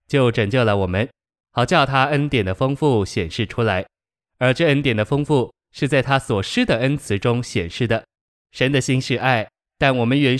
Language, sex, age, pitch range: Chinese, male, 20-39, 110-135 Hz